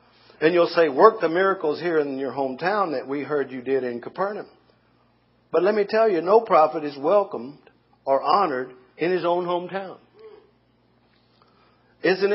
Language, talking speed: English, 160 wpm